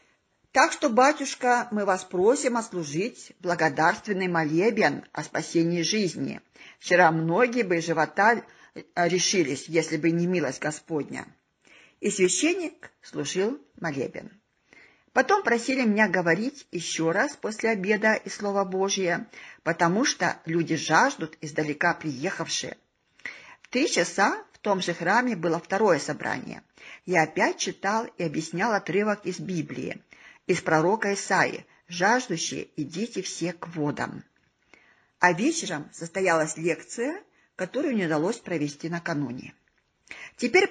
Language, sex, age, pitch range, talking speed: Russian, female, 50-69, 165-220 Hz, 115 wpm